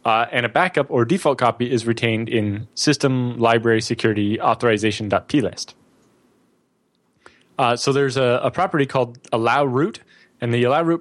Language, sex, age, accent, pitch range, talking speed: English, male, 20-39, American, 120-155 Hz, 145 wpm